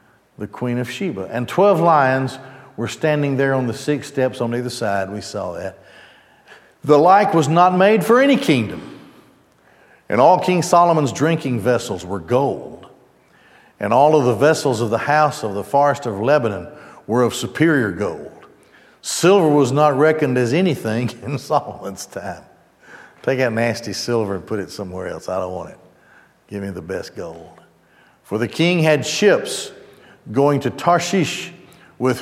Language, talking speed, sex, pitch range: English, 165 wpm, male, 120-165 Hz